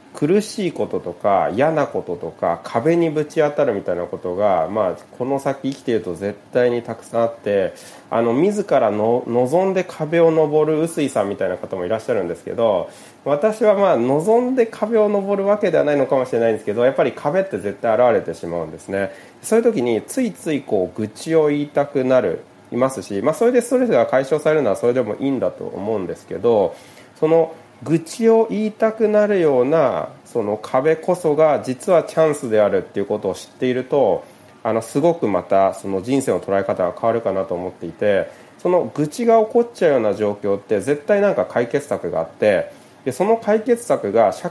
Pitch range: 120-195 Hz